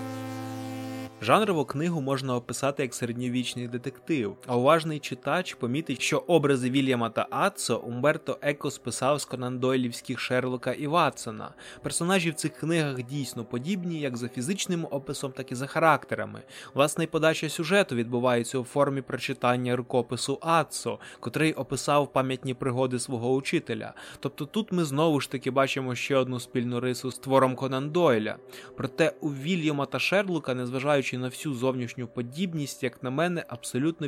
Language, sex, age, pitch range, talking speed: Ukrainian, male, 20-39, 130-160 Hz, 145 wpm